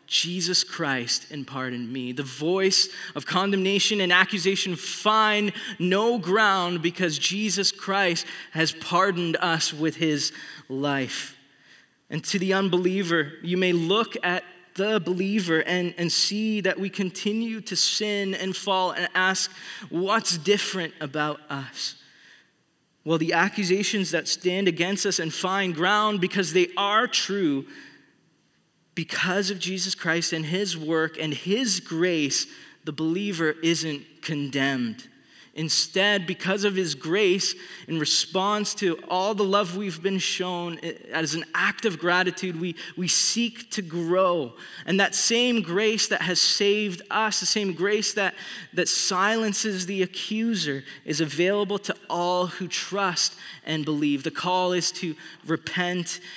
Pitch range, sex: 165-200 Hz, male